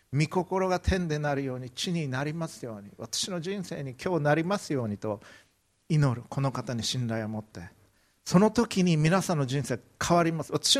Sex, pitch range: male, 110-150 Hz